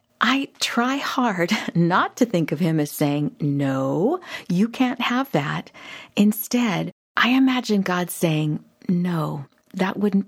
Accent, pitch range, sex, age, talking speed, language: American, 155-230 Hz, female, 50-69, 135 wpm, English